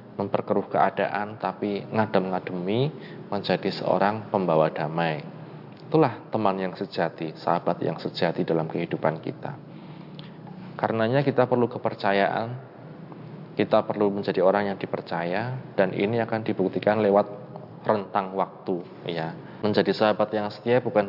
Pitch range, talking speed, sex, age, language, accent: 95-125 Hz, 115 wpm, male, 20-39, Indonesian, native